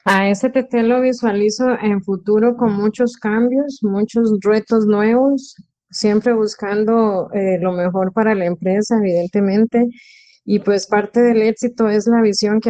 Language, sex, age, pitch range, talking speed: Spanish, female, 30-49, 180-215 Hz, 140 wpm